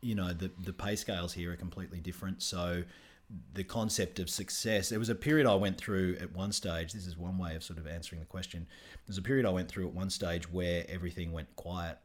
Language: English